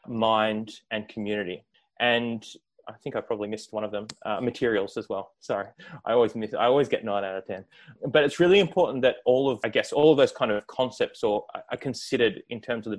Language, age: English, 20-39